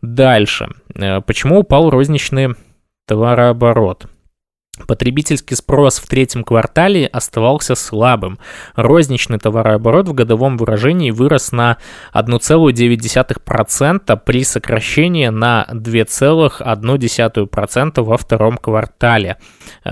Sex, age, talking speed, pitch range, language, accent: male, 20-39, 80 wpm, 110-130 Hz, Russian, native